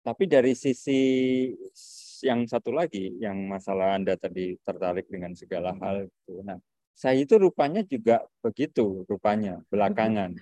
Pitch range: 95-120 Hz